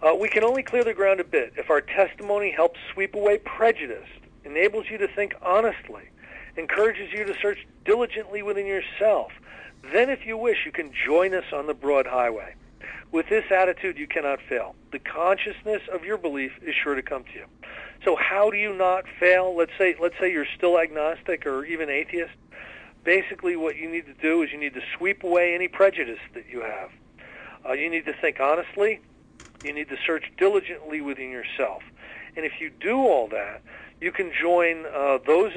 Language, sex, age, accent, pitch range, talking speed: English, male, 50-69, American, 150-205 Hz, 190 wpm